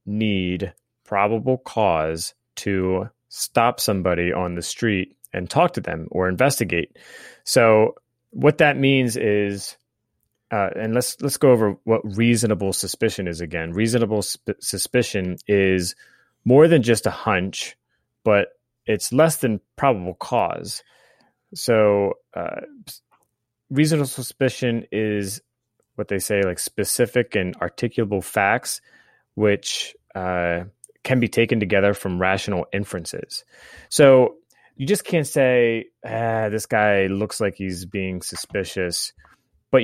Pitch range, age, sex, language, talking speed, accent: 95-120 Hz, 30-49, male, English, 125 wpm, American